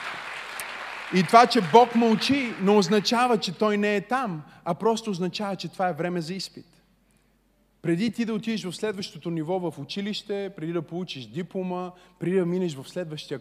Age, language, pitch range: 30-49, Bulgarian, 165-210 Hz